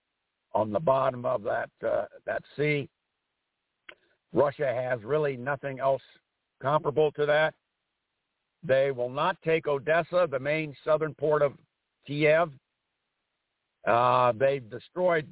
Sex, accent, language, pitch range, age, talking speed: male, American, English, 130-160 Hz, 60-79, 120 wpm